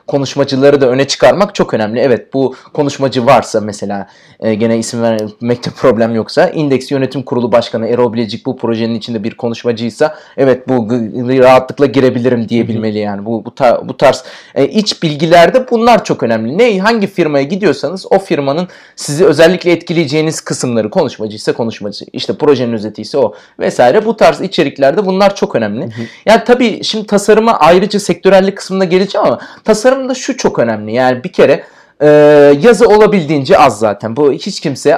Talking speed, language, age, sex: 155 wpm, Turkish, 30-49, male